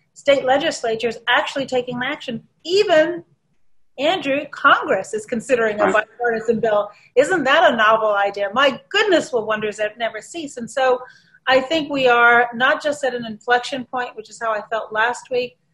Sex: female